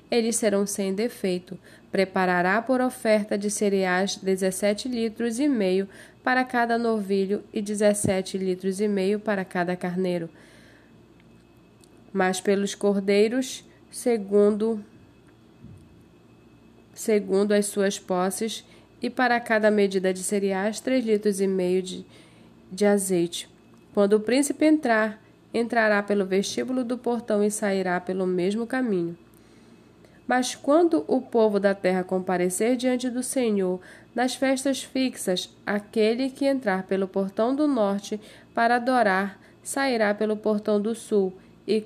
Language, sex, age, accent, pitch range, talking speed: Portuguese, female, 20-39, Brazilian, 190-235 Hz, 125 wpm